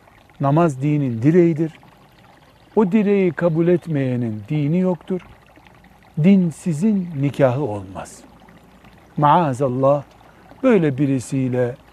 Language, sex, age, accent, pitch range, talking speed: Turkish, male, 60-79, native, 125-180 Hz, 80 wpm